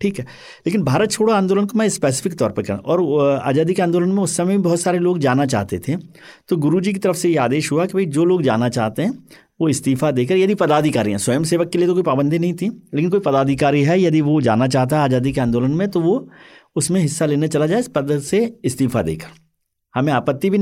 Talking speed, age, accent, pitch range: 245 wpm, 50-69, native, 130-185 Hz